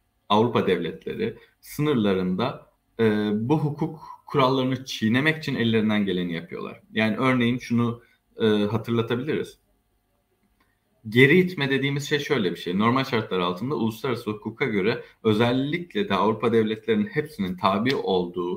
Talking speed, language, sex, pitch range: 120 wpm, Turkish, male, 105-140 Hz